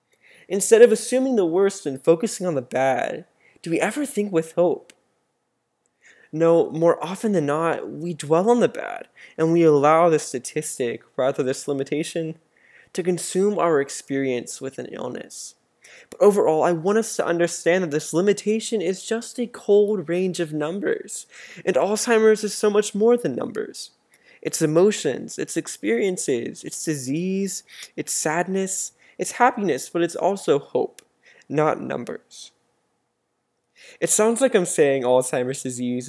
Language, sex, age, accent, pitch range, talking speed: English, male, 20-39, American, 145-195 Hz, 150 wpm